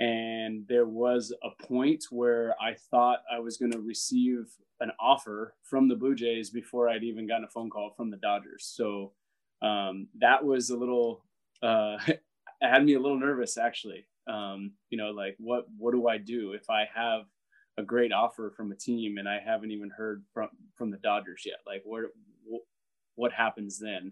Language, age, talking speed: English, 20-39, 190 wpm